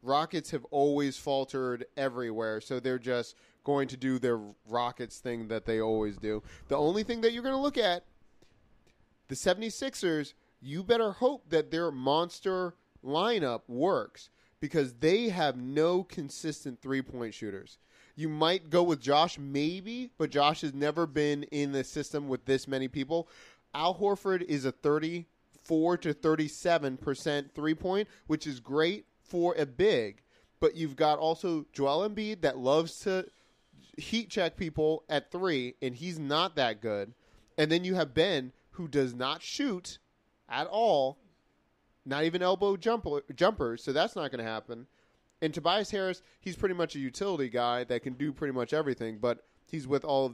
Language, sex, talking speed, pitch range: English, male, 165 wpm, 130-175 Hz